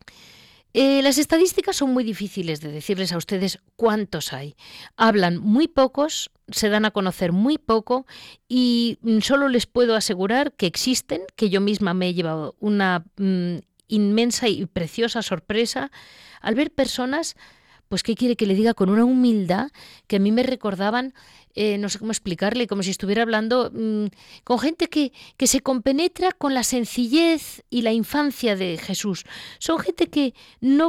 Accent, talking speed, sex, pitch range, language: Spanish, 165 wpm, female, 205-275 Hz, Spanish